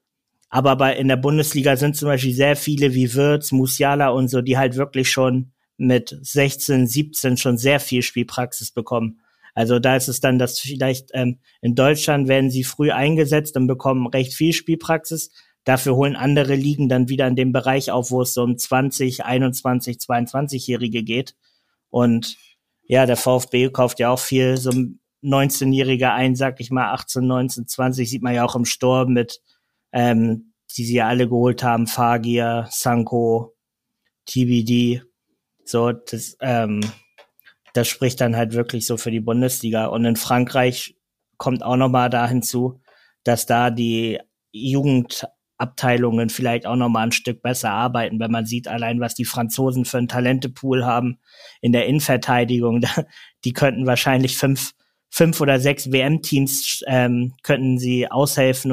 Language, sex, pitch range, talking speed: German, male, 120-135 Hz, 160 wpm